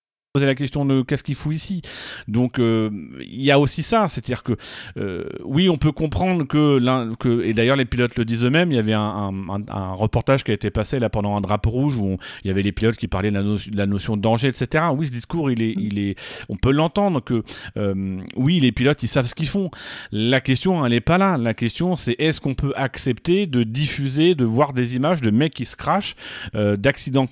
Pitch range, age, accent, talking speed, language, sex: 115-150 Hz, 40-59, French, 245 wpm, French, male